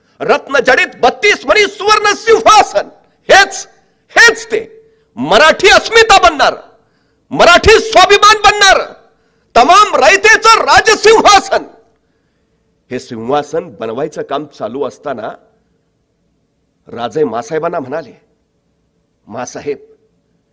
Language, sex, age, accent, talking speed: Marathi, male, 50-69, native, 85 wpm